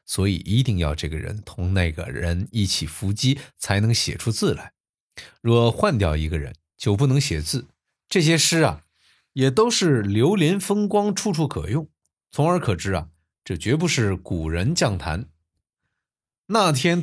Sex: male